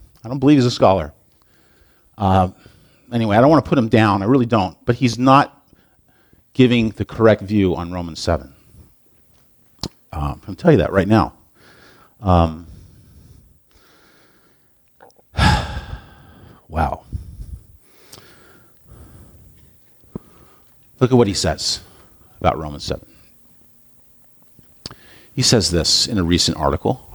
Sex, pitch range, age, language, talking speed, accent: male, 90-125 Hz, 50-69, English, 115 wpm, American